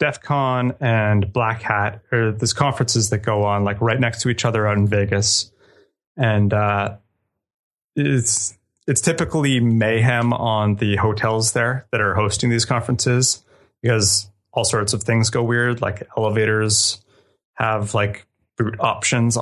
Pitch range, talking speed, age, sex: 100-120 Hz, 150 wpm, 30-49, male